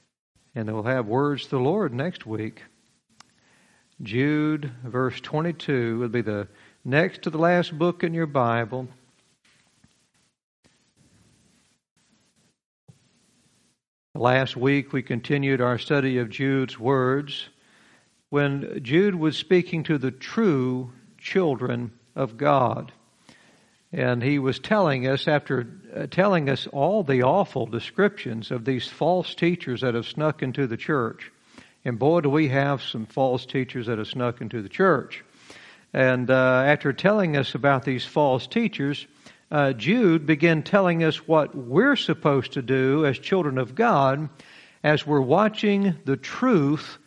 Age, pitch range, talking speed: 60-79, 130-160 Hz, 135 wpm